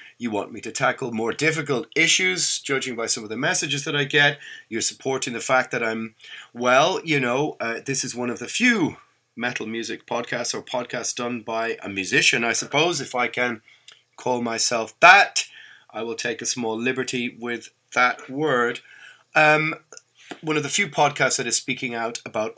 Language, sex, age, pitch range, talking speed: English, male, 30-49, 115-145 Hz, 185 wpm